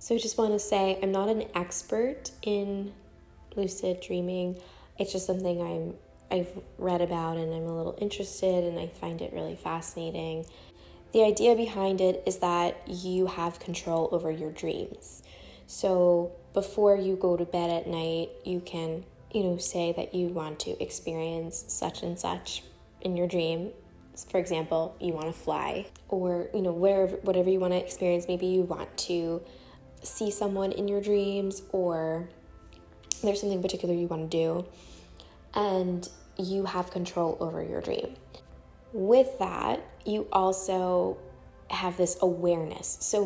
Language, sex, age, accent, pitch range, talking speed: English, female, 10-29, American, 165-190 Hz, 160 wpm